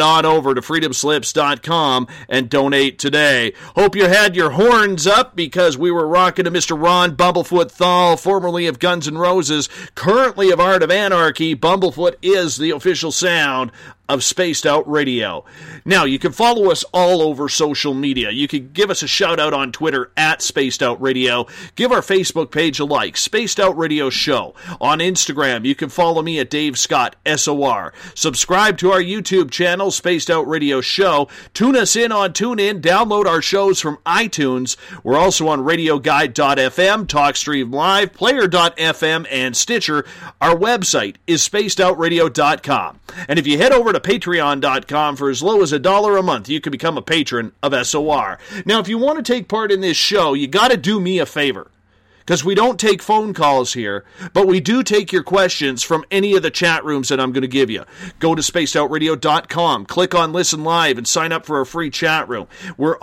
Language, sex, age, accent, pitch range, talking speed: English, male, 40-59, American, 145-185 Hz, 190 wpm